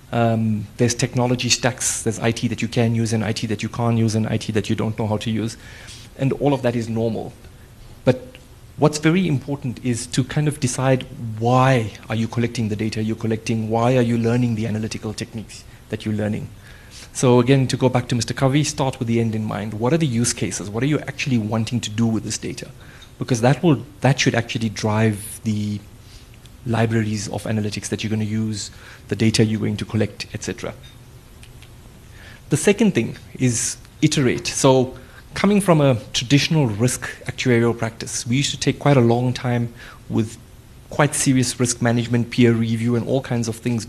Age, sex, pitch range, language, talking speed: 30-49, male, 110-125 Hz, English, 195 wpm